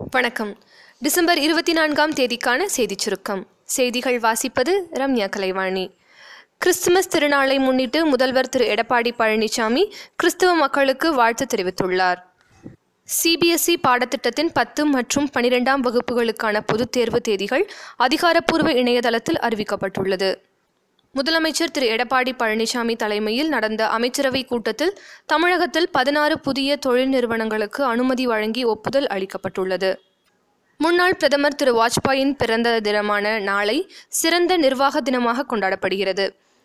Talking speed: 100 wpm